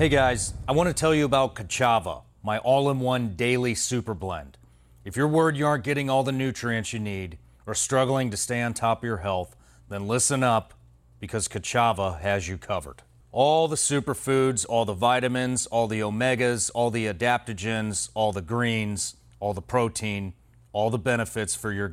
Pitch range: 100-125 Hz